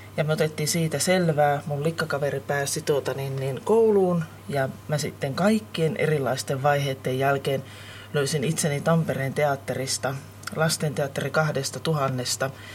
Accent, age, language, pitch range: native, 30-49, Finnish, 135-175 Hz